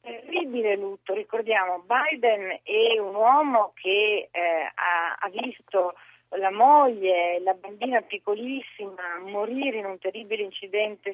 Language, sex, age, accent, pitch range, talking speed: Italian, female, 50-69, native, 200-250 Hz, 120 wpm